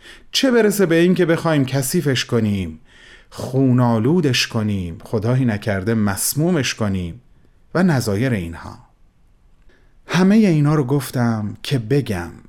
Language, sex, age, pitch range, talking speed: Persian, male, 30-49, 105-155 Hz, 105 wpm